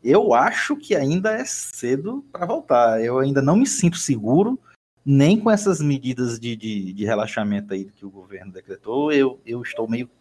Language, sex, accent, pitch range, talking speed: Portuguese, male, Brazilian, 105-150 Hz, 180 wpm